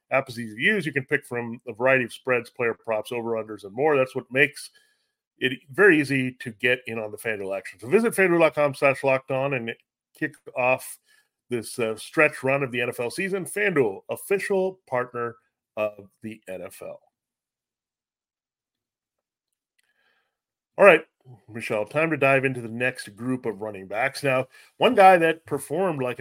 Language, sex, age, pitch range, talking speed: English, male, 40-59, 120-150 Hz, 165 wpm